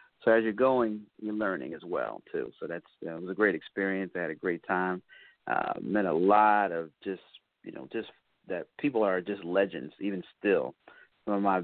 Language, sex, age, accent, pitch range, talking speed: English, male, 40-59, American, 90-105 Hz, 215 wpm